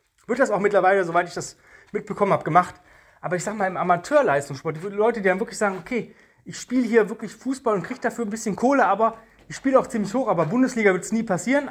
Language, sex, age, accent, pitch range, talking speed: German, male, 30-49, German, 170-230 Hz, 235 wpm